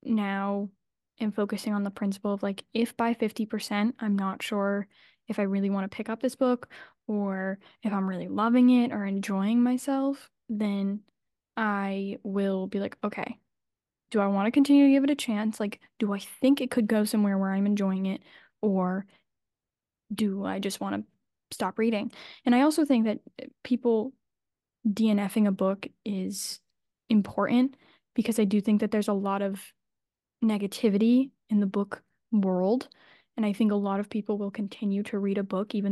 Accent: American